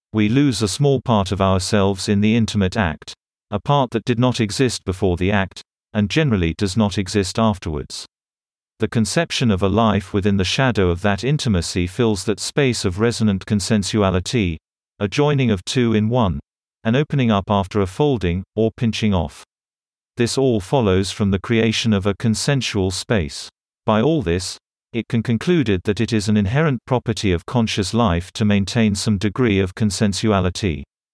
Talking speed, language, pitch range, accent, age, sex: 170 wpm, English, 95-120 Hz, British, 50-69, male